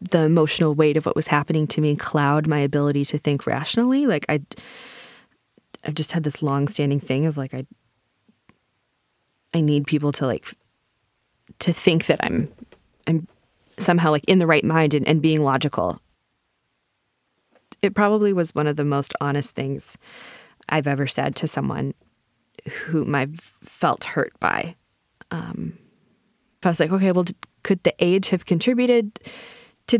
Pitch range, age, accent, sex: 145-195 Hz, 20-39, American, female